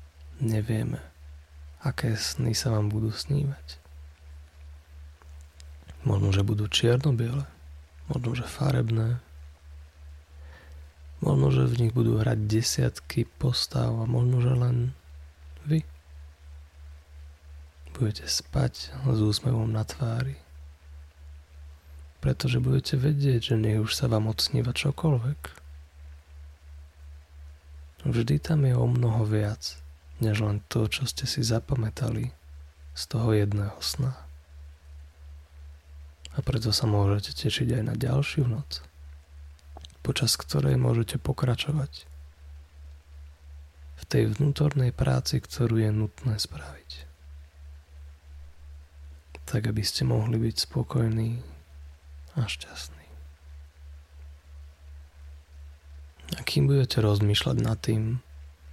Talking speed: 95 wpm